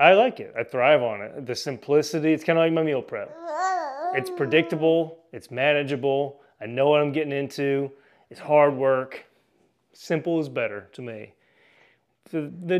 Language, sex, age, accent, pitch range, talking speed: English, male, 30-49, American, 140-195 Hz, 165 wpm